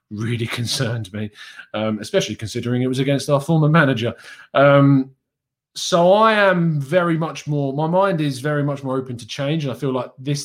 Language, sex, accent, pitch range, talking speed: English, male, British, 120-165 Hz, 190 wpm